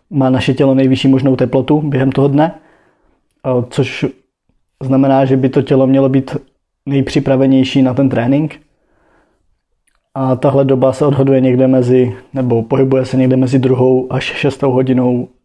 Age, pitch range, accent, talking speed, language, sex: 20-39, 130-140 Hz, native, 145 wpm, Czech, male